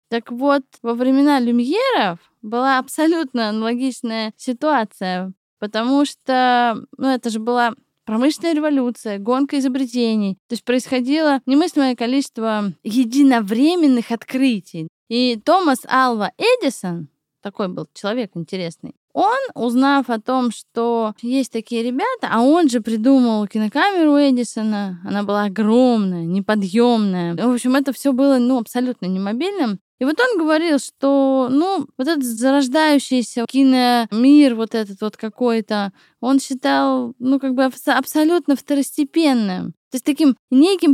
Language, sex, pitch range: Russian, female, 225-280 Hz